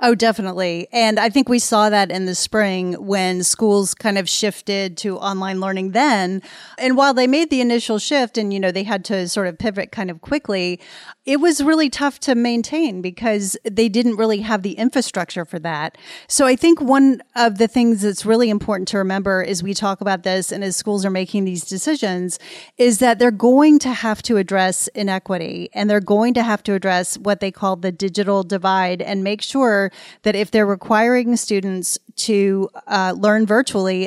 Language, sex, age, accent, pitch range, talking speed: English, female, 30-49, American, 190-230 Hz, 195 wpm